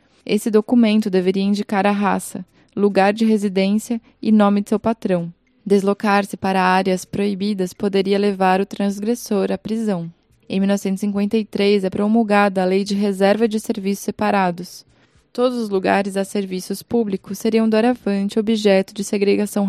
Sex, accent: female, Brazilian